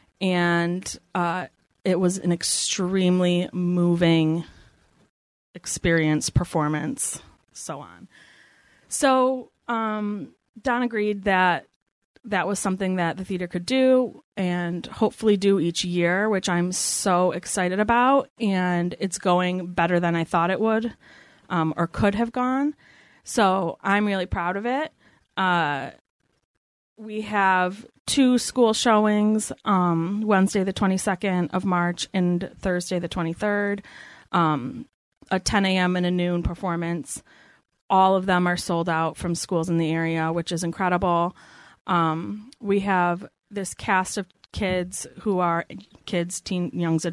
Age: 30-49